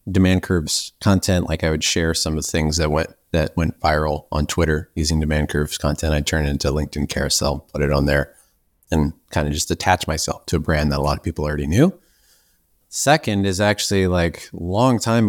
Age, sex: 30-49, male